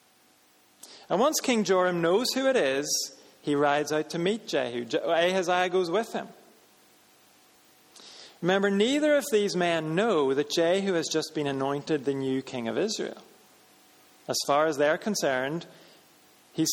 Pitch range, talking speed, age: 150-200 Hz, 145 wpm, 40-59